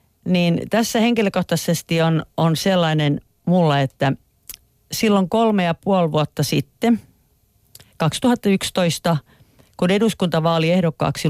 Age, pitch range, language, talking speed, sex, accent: 40-59, 135-185 Hz, Finnish, 90 wpm, female, native